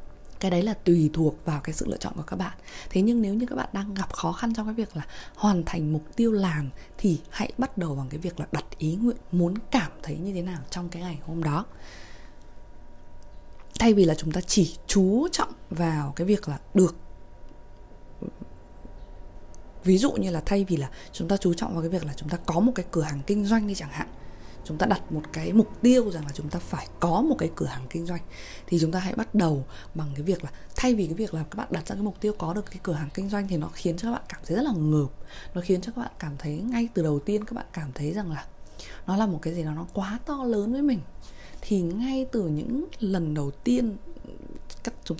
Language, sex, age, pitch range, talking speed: Vietnamese, female, 20-39, 155-210 Hz, 250 wpm